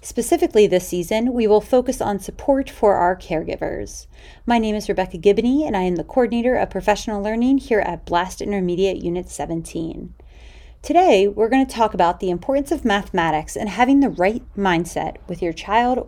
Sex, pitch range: female, 170-245 Hz